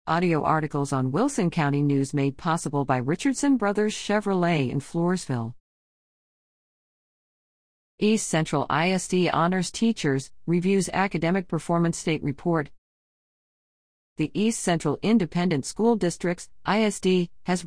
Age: 40-59